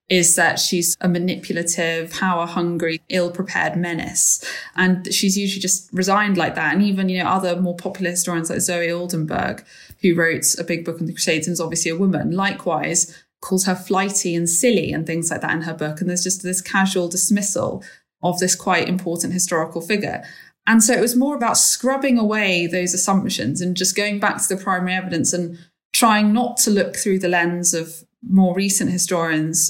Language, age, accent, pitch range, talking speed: English, 20-39, British, 170-195 Hz, 195 wpm